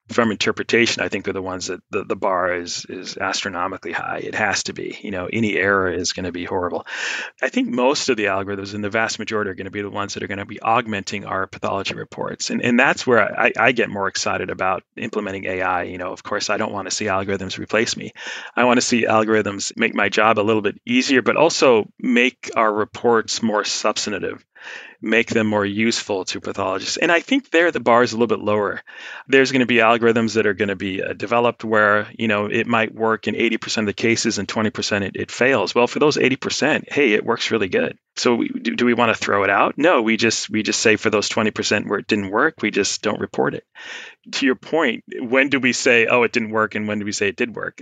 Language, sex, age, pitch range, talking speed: English, male, 40-59, 105-115 Hz, 240 wpm